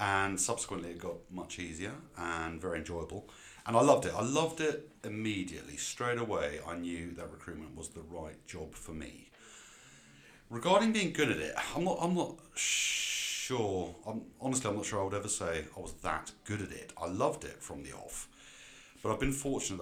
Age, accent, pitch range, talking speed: 40-59, British, 85-105 Hz, 195 wpm